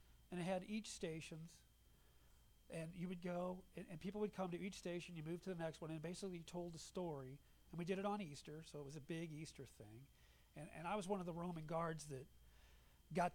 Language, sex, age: English, male, 40-59